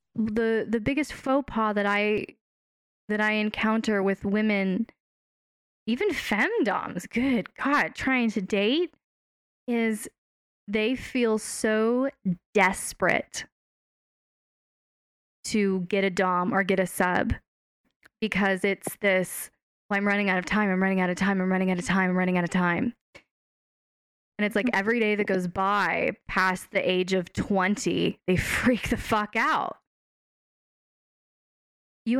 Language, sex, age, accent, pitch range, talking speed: English, female, 20-39, American, 190-225 Hz, 140 wpm